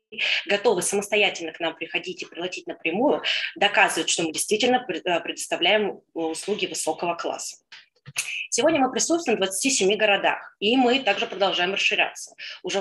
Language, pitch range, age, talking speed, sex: Turkish, 170-210 Hz, 20-39, 130 wpm, female